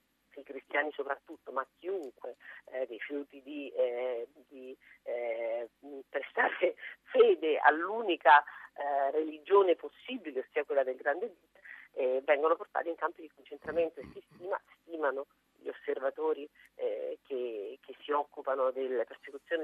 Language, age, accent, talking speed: Italian, 40-59, native, 130 wpm